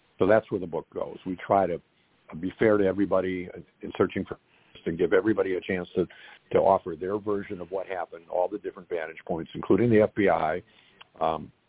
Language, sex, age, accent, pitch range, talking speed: English, male, 50-69, American, 90-105 Hz, 195 wpm